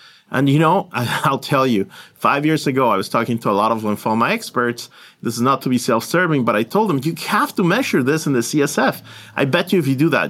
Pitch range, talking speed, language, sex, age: 115-150 Hz, 250 wpm, English, male, 40-59